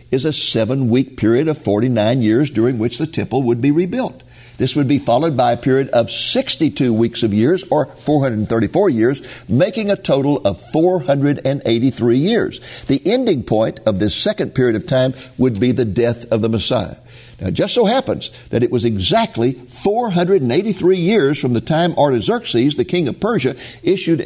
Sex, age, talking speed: male, 60-79, 175 wpm